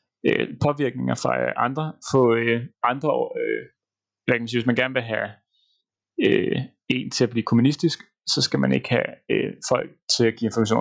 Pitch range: 120-150 Hz